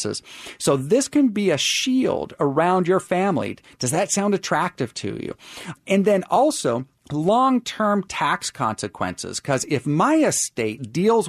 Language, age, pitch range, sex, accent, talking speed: English, 40-59, 130-190 Hz, male, American, 145 wpm